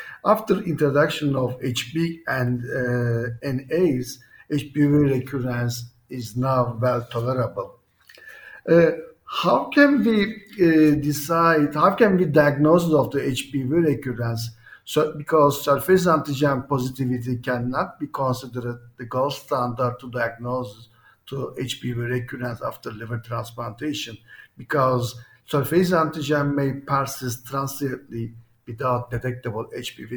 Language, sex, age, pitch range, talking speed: English, male, 50-69, 125-155 Hz, 110 wpm